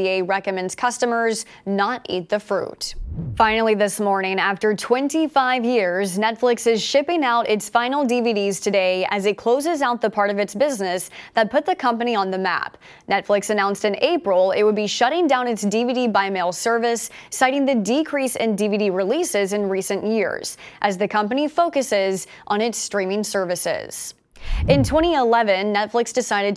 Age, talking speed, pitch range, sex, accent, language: 20-39, 160 wpm, 200-245 Hz, female, American, English